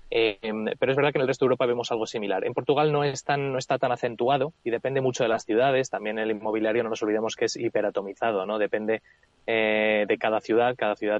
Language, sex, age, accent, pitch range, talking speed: Spanish, male, 20-39, Spanish, 110-135 Hz, 240 wpm